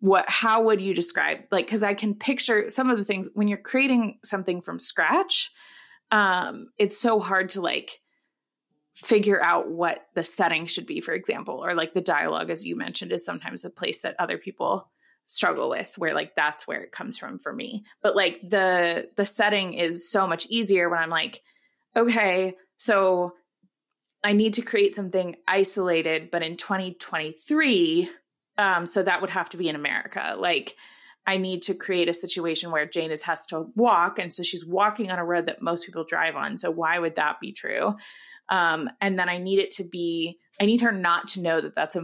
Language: English